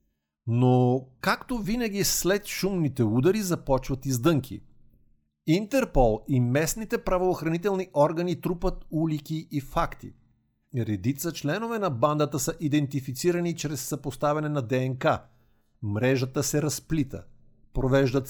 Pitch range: 120-160 Hz